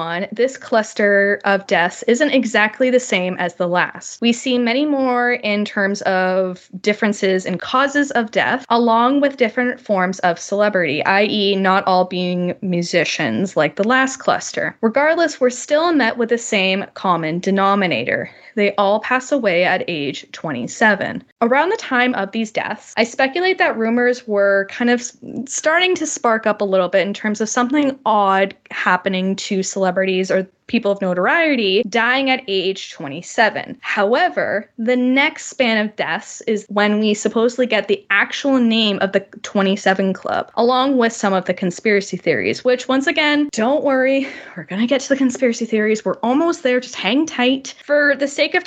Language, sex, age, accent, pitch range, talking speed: English, female, 10-29, American, 195-255 Hz, 170 wpm